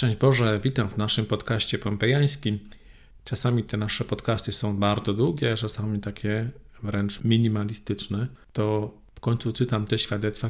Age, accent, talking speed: 40-59, native, 135 wpm